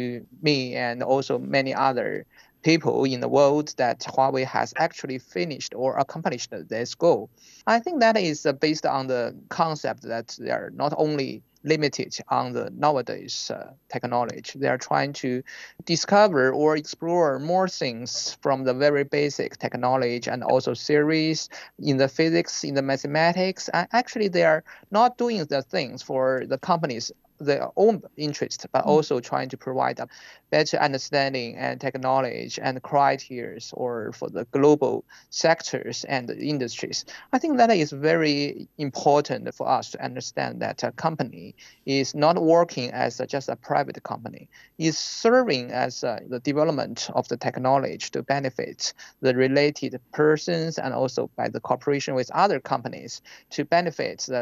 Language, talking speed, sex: English, 155 wpm, male